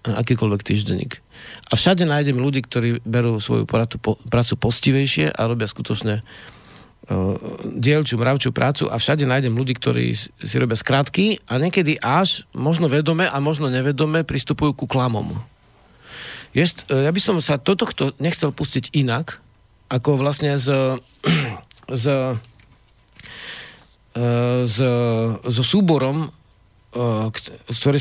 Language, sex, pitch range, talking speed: Slovak, male, 115-155 Hz, 125 wpm